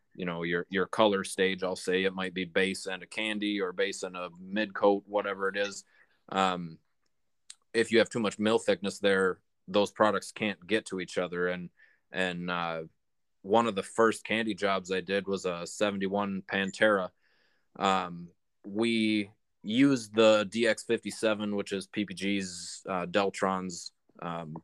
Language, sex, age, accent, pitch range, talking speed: English, male, 20-39, American, 95-105 Hz, 160 wpm